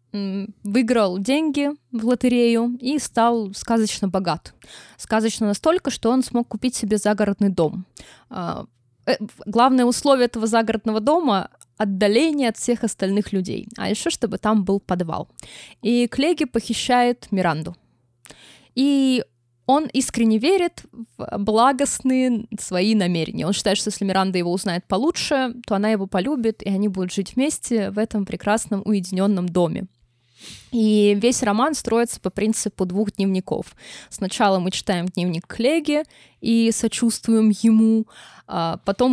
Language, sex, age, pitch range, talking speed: Russian, female, 20-39, 190-235 Hz, 130 wpm